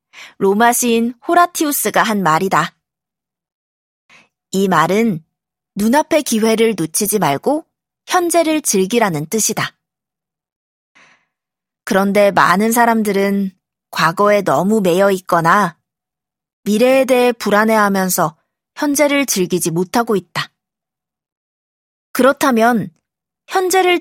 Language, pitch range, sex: Korean, 190-265 Hz, female